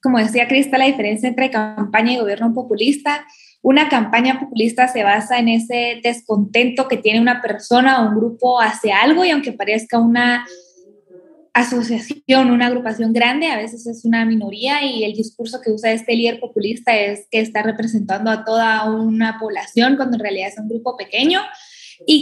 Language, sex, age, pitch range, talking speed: Spanish, female, 10-29, 215-255 Hz, 175 wpm